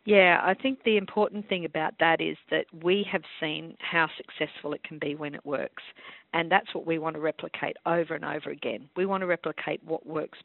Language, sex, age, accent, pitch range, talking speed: English, female, 50-69, Australian, 160-195 Hz, 220 wpm